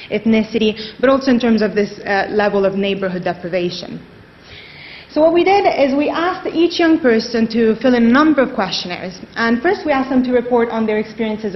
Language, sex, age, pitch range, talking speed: English, female, 30-49, 210-265 Hz, 205 wpm